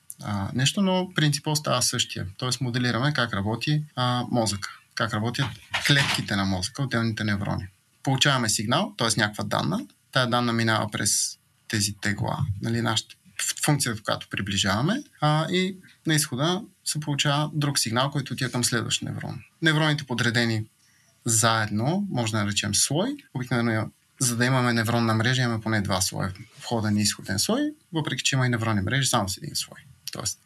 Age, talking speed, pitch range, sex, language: 30-49, 160 wpm, 110-150 Hz, male, Bulgarian